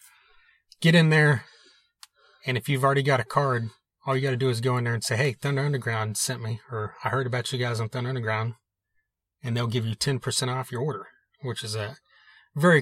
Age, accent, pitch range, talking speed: 30-49, American, 115-140 Hz, 220 wpm